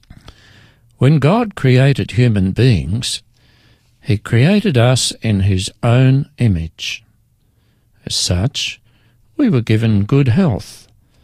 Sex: male